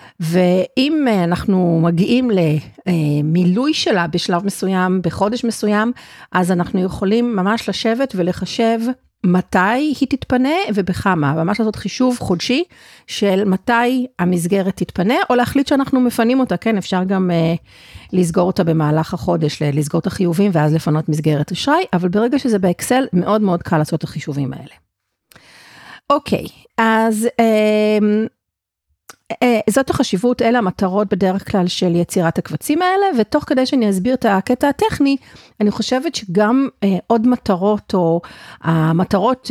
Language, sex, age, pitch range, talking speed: Hebrew, female, 40-59, 180-245 Hz, 130 wpm